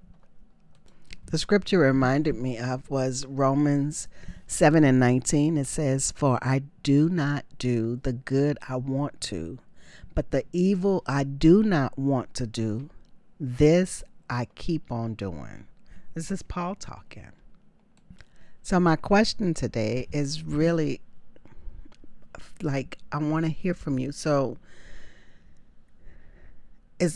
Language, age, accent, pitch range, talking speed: English, 40-59, American, 125-160 Hz, 120 wpm